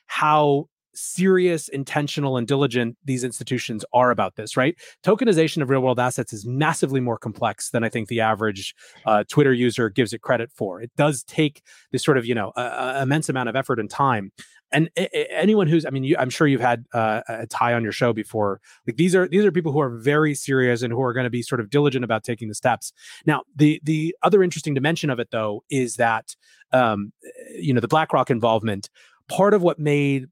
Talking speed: 210 wpm